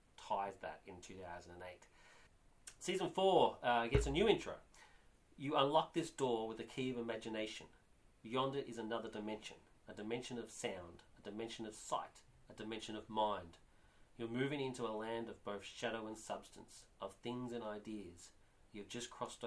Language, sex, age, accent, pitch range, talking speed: English, male, 40-59, Australian, 100-120 Hz, 160 wpm